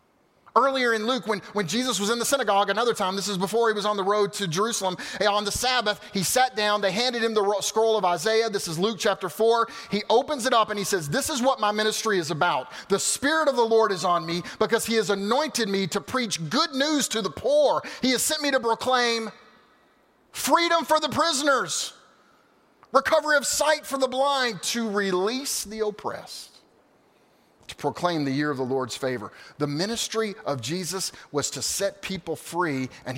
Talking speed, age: 200 wpm, 30-49